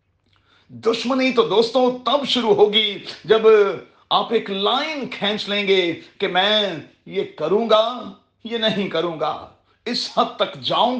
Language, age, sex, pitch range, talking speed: Urdu, 40-59, male, 180-240 Hz, 140 wpm